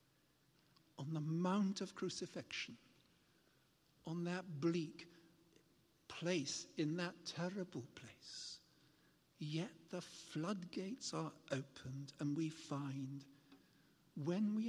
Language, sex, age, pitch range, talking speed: English, male, 60-79, 140-170 Hz, 95 wpm